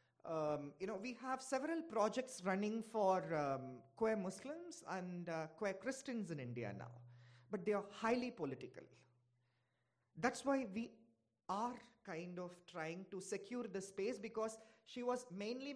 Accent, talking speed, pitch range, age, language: Indian, 150 wpm, 175-245 Hz, 30-49, English